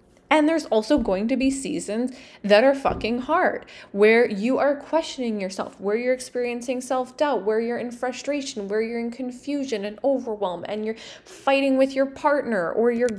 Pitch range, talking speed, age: 205-265 Hz, 175 wpm, 20-39